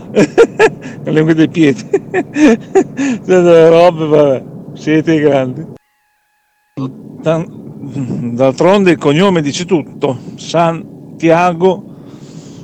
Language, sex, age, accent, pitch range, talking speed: Italian, male, 50-69, native, 155-200 Hz, 75 wpm